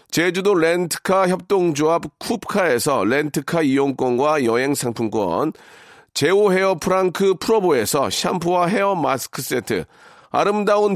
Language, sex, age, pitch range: Korean, male, 40-59, 155-200 Hz